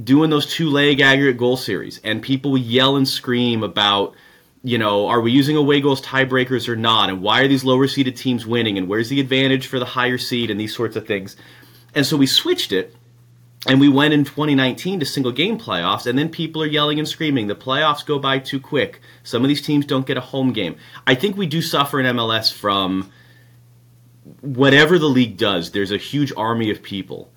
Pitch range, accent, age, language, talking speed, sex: 115-145 Hz, American, 30-49, English, 210 wpm, male